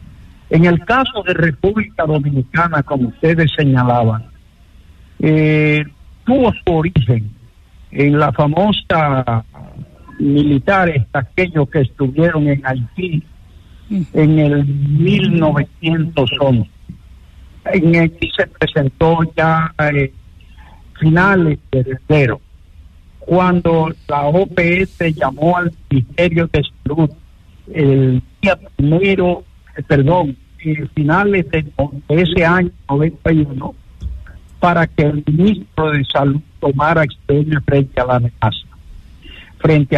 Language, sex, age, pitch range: English, male, 60-79, 130-170 Hz